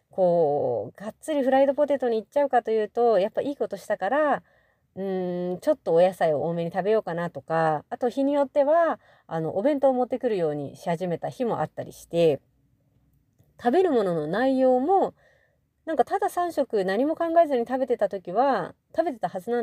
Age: 30-49